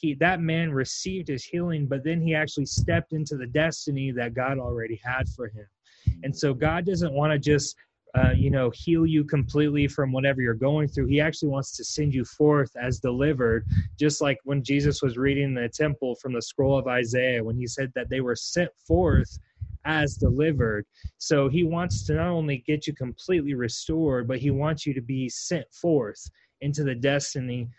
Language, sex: English, male